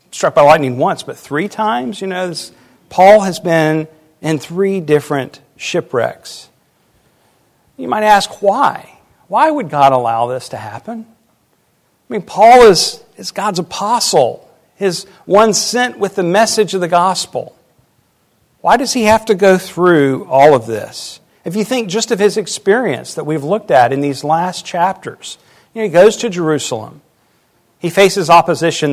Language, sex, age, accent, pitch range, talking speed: English, male, 50-69, American, 150-205 Hz, 160 wpm